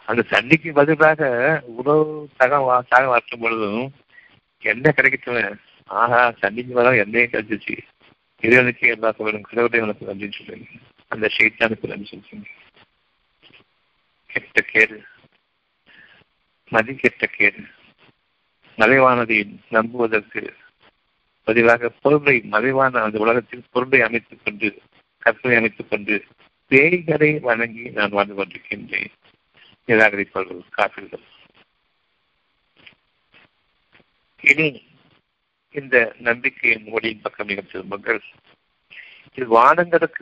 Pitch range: 110-130 Hz